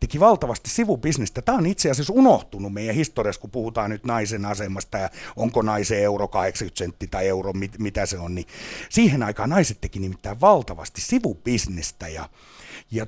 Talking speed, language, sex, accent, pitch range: 170 wpm, Finnish, male, native, 100-150 Hz